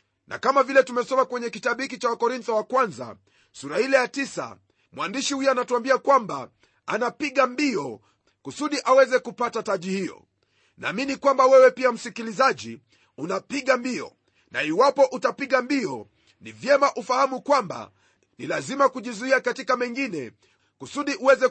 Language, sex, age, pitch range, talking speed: Swahili, male, 40-59, 220-265 Hz, 135 wpm